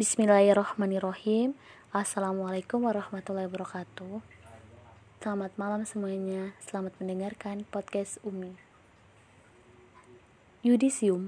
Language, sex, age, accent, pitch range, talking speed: Indonesian, female, 20-39, native, 190-220 Hz, 65 wpm